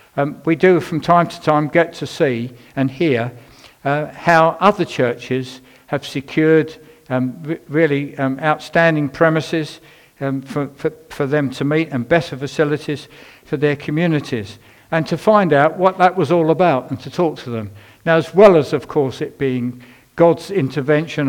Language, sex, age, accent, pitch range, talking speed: English, male, 60-79, British, 130-165 Hz, 165 wpm